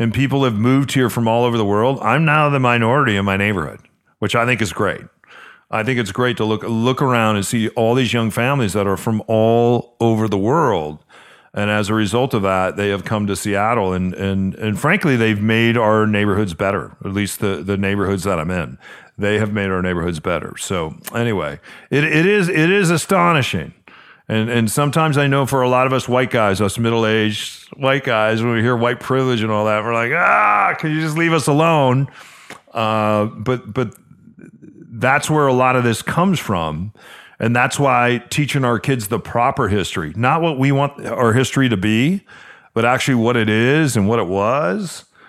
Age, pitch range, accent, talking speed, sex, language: 40-59, 105-130 Hz, American, 205 wpm, male, English